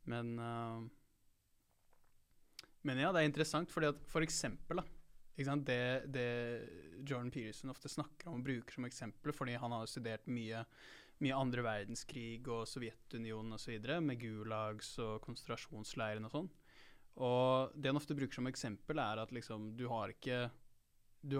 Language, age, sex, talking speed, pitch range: English, 20-39, male, 160 wpm, 115-140 Hz